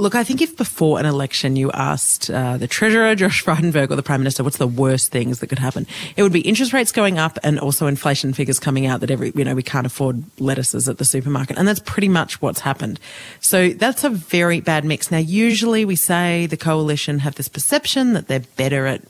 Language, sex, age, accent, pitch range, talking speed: English, female, 30-49, Australian, 135-195 Hz, 235 wpm